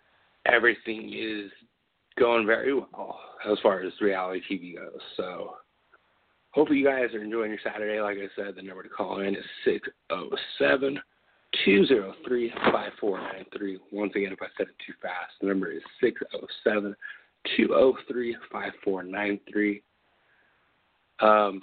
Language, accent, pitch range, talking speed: English, American, 100-115 Hz, 115 wpm